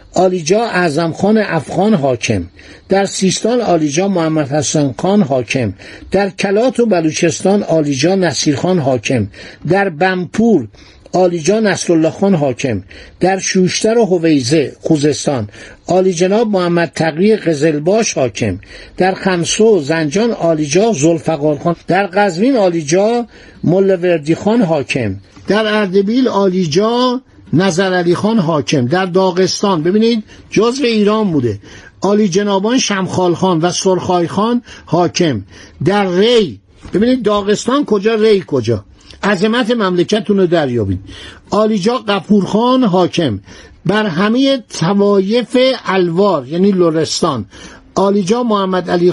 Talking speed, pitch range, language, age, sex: 110 wpm, 160-210 Hz, Persian, 60-79, male